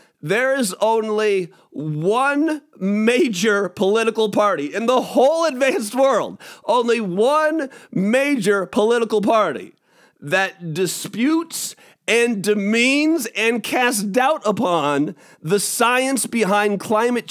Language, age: English, 40-59